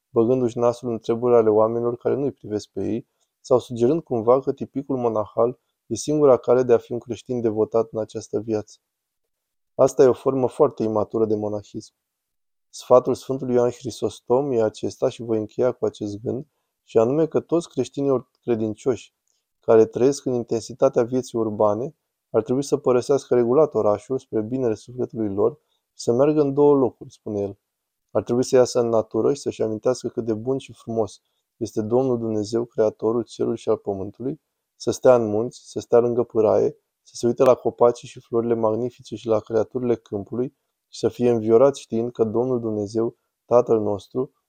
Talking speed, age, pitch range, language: 175 wpm, 20-39, 110-125 Hz, Romanian